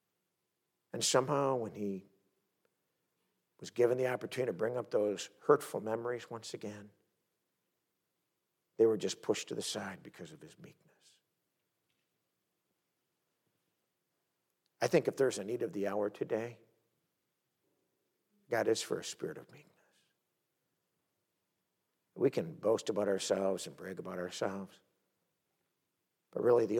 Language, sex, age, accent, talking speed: English, male, 60-79, American, 125 wpm